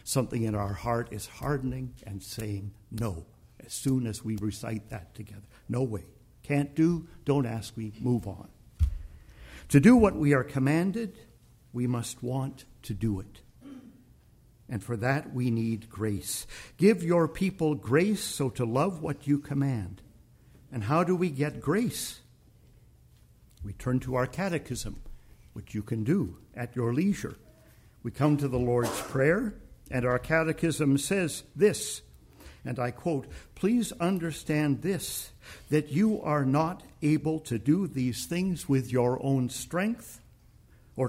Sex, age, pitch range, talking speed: male, 50-69, 115-150 Hz, 150 wpm